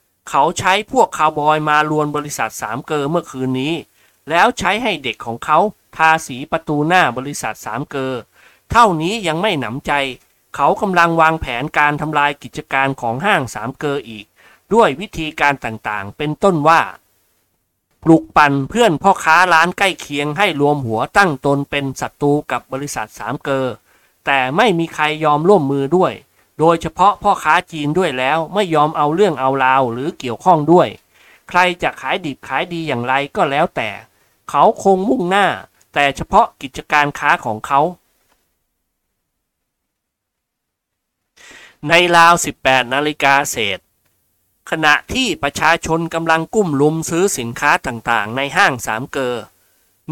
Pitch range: 130-165 Hz